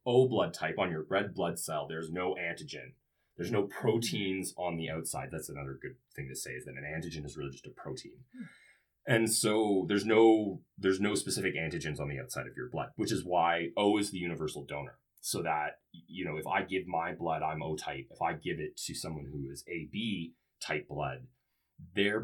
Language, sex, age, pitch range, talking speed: English, male, 30-49, 80-105 Hz, 215 wpm